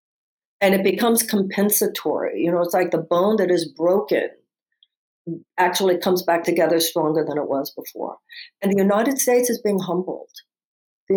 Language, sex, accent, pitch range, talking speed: English, female, American, 175-210 Hz, 160 wpm